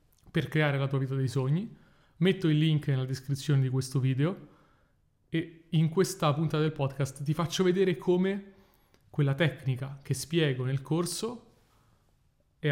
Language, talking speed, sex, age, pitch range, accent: Italian, 150 wpm, male, 30-49, 135-155 Hz, native